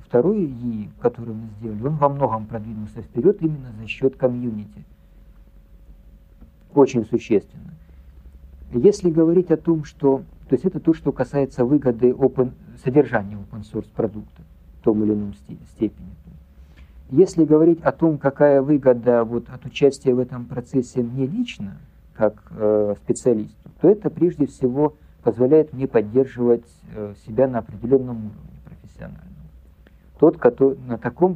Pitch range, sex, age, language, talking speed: 110-135 Hz, male, 50-69, Russian, 125 wpm